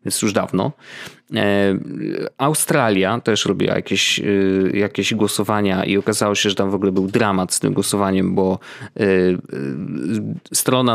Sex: male